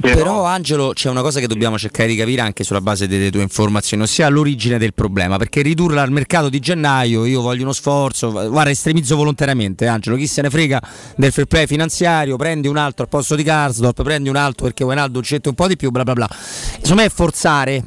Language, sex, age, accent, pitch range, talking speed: Italian, male, 30-49, native, 120-160 Hz, 220 wpm